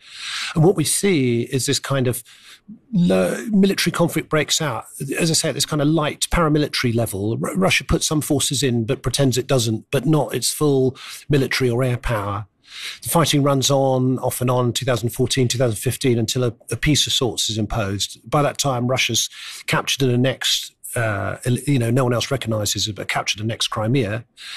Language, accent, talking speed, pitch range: English, British, 190 wpm, 120-150 Hz